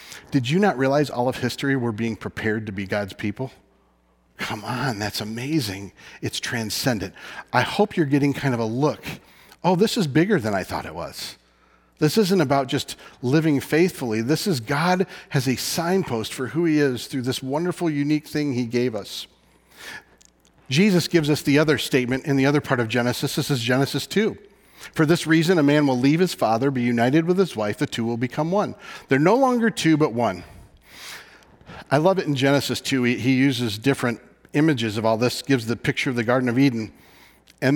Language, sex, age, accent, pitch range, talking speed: English, male, 40-59, American, 120-150 Hz, 195 wpm